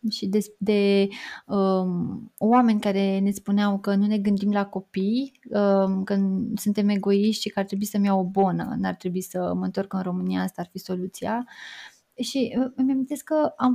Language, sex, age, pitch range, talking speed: Romanian, female, 20-39, 195-235 Hz, 185 wpm